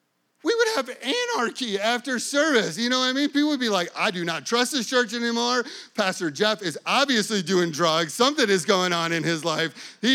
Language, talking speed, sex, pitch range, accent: English, 215 wpm, male, 190-270 Hz, American